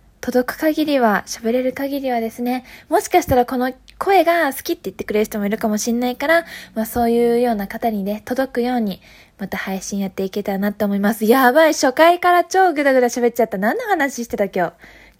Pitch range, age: 210-260 Hz, 20-39